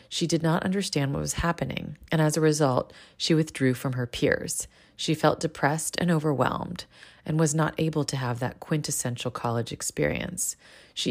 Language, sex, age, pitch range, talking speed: English, female, 30-49, 130-165 Hz, 175 wpm